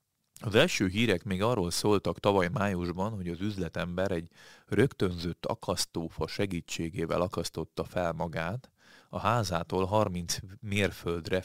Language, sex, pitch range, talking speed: Hungarian, male, 90-110 Hz, 115 wpm